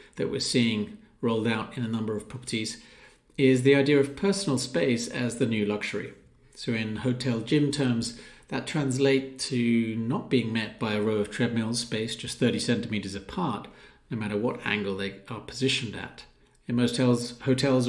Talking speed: 180 wpm